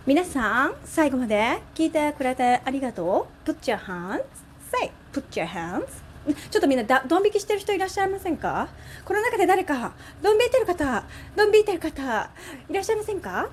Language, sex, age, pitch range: Japanese, female, 30-49, 225-315 Hz